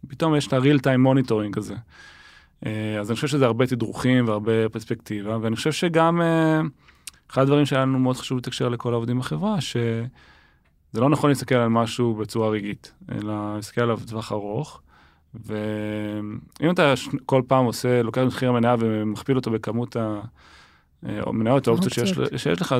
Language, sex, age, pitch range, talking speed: Hebrew, male, 20-39, 110-135 Hz, 155 wpm